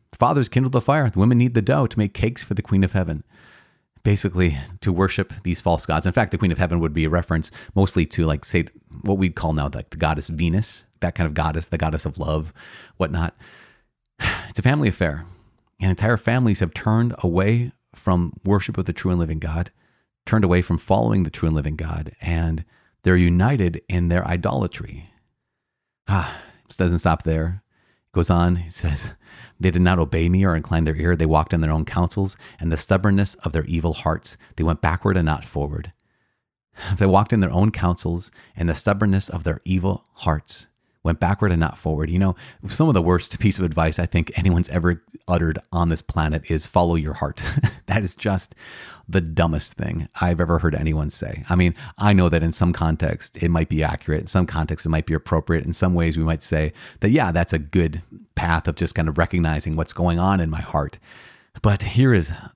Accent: American